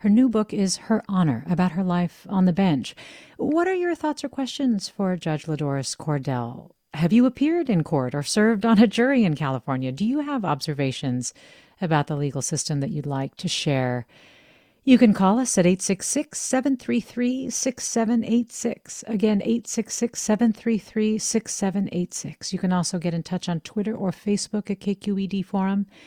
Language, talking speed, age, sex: English, 155 wpm, 50-69, female